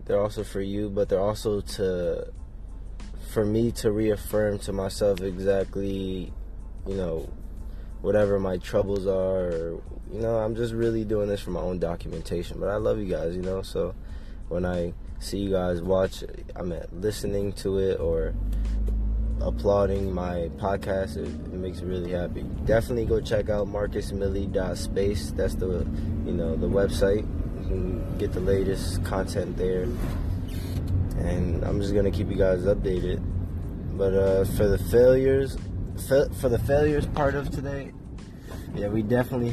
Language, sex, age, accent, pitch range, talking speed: English, male, 20-39, American, 90-100 Hz, 150 wpm